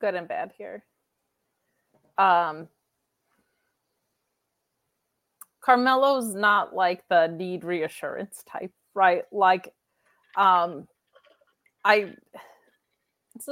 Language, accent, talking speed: English, American, 65 wpm